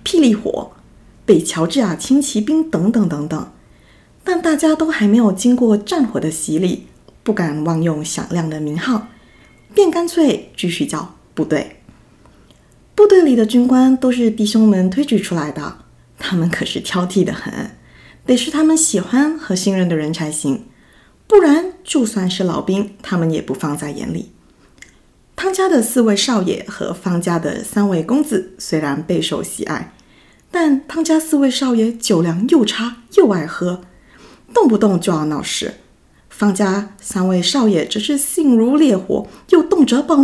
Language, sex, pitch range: Chinese, female, 180-280 Hz